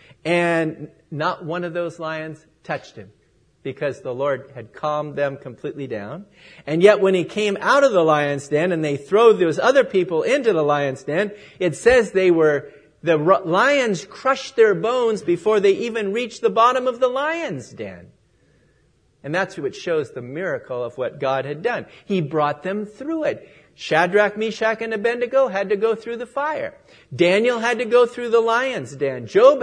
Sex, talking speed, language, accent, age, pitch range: male, 180 wpm, English, American, 50-69, 150-230 Hz